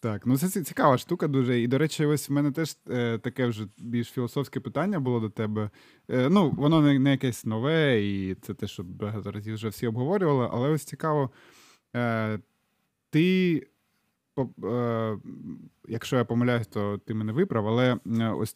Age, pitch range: 20-39, 115-140 Hz